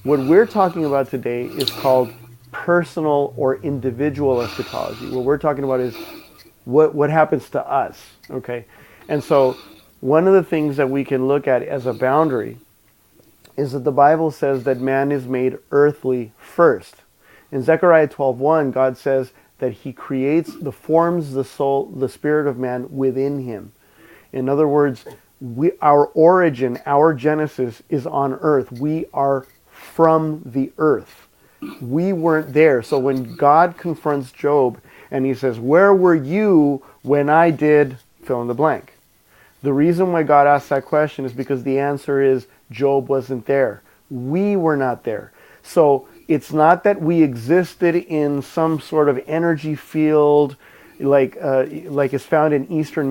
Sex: male